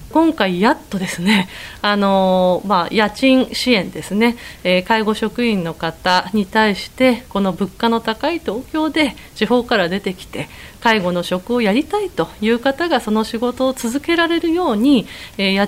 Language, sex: Japanese, female